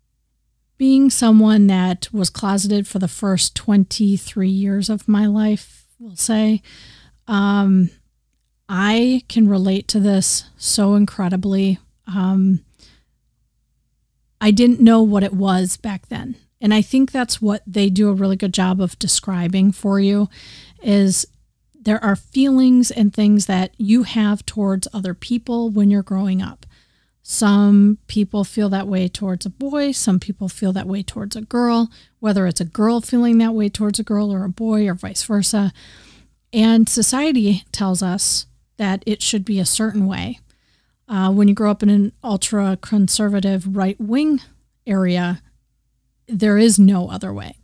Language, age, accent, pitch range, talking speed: English, 40-59, American, 190-215 Hz, 155 wpm